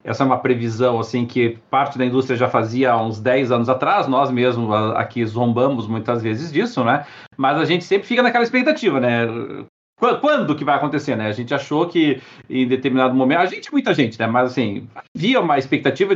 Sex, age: male, 40-59